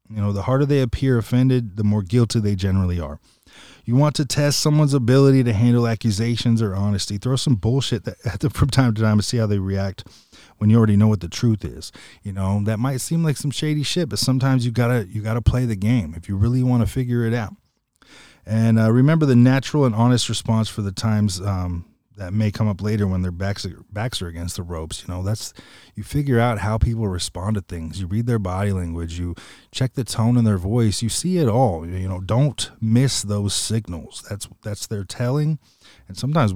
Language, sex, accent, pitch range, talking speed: English, male, American, 95-120 Hz, 225 wpm